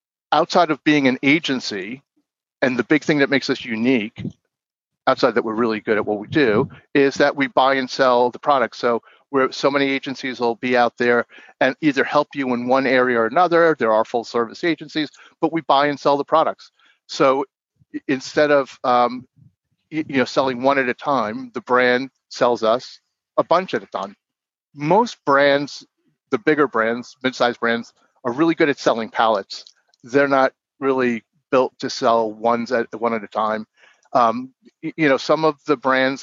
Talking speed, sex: 185 wpm, male